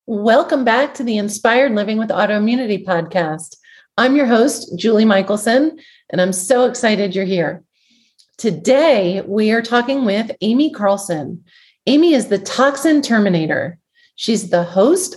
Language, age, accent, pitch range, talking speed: English, 40-59, American, 180-245 Hz, 140 wpm